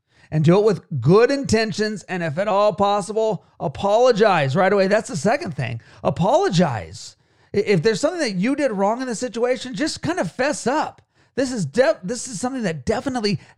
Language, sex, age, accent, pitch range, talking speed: English, male, 40-59, American, 165-230 Hz, 175 wpm